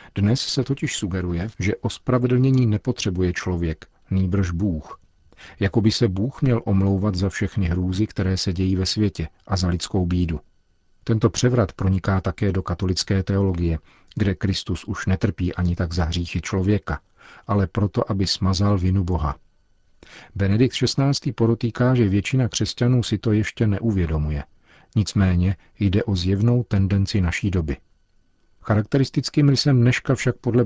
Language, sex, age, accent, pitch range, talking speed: Czech, male, 50-69, native, 90-110 Hz, 140 wpm